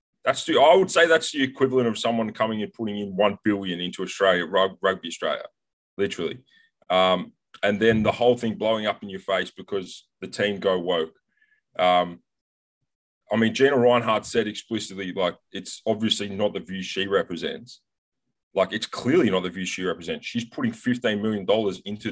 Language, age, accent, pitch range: English, 20-39, Australian, 100-130 Hz